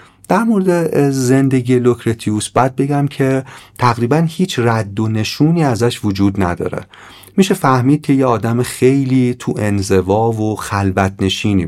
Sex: male